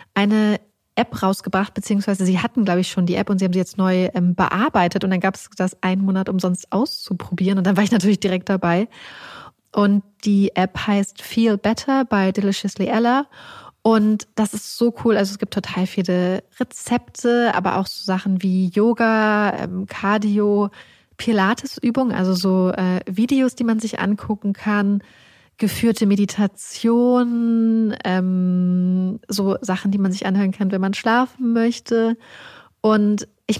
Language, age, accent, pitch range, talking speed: German, 20-39, German, 190-220 Hz, 160 wpm